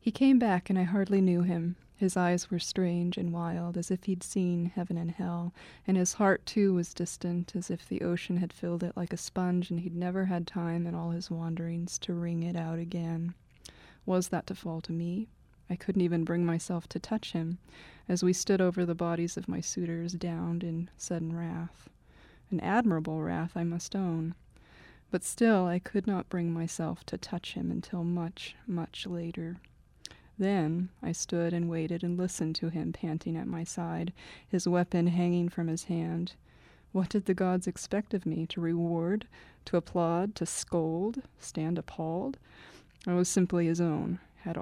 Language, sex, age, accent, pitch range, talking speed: English, female, 30-49, American, 170-185 Hz, 185 wpm